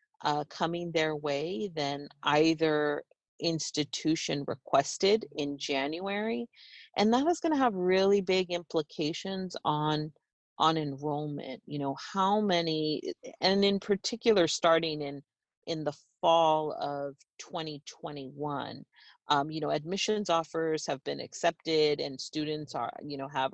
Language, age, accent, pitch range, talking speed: English, 40-59, American, 140-175 Hz, 135 wpm